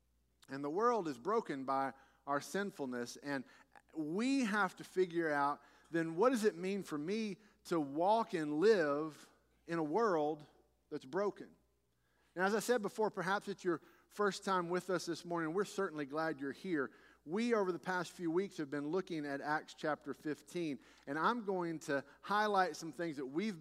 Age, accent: 50-69, American